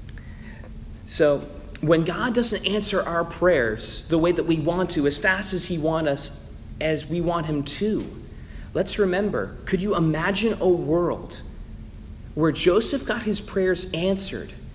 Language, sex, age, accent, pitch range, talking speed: English, male, 40-59, American, 135-195 Hz, 150 wpm